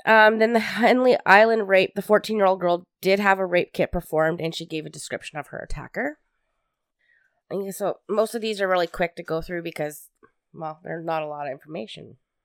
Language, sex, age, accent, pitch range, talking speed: English, female, 20-39, American, 160-195 Hz, 200 wpm